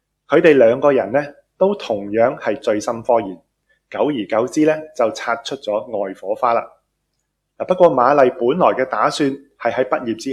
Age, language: 20-39, Chinese